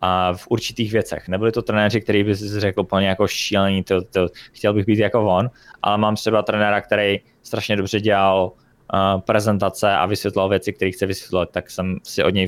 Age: 20-39